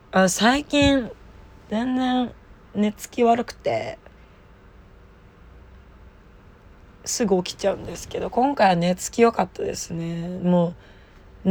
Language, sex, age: Japanese, female, 20-39